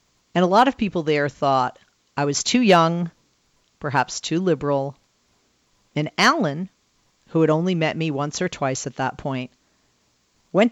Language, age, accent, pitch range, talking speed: English, 40-59, American, 140-175 Hz, 155 wpm